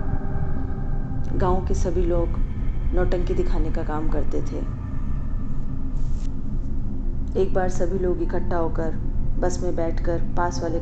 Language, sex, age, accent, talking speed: Hindi, female, 20-39, native, 115 wpm